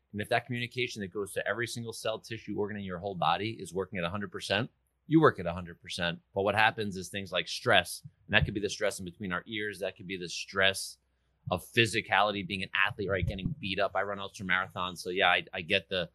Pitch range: 90-115 Hz